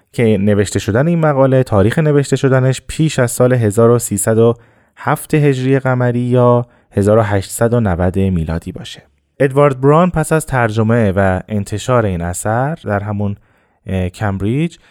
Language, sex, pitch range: Persian, male, 100-135 Hz